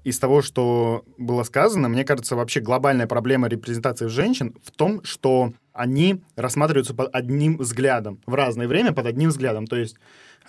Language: Russian